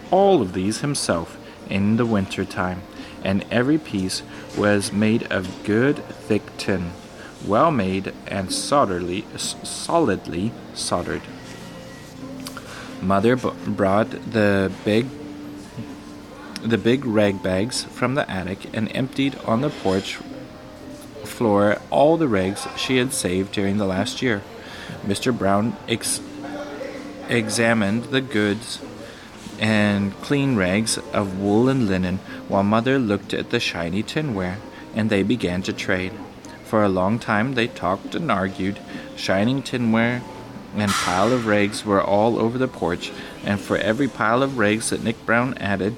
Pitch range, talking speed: 100-120 Hz, 135 wpm